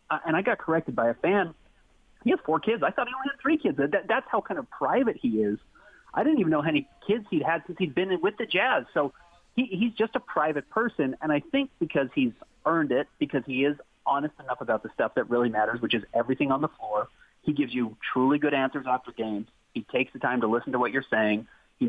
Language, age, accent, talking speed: English, 30-49, American, 245 wpm